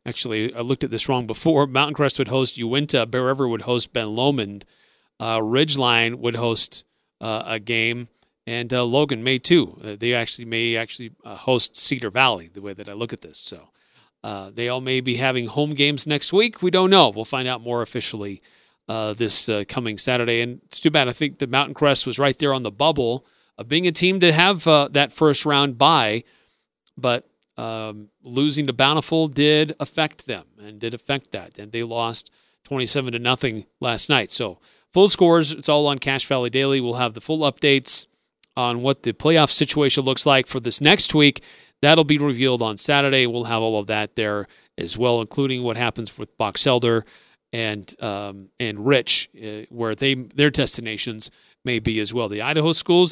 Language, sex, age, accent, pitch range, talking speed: English, male, 40-59, American, 115-145 Hz, 200 wpm